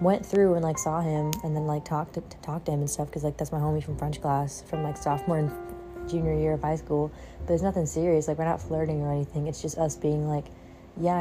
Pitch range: 150-180 Hz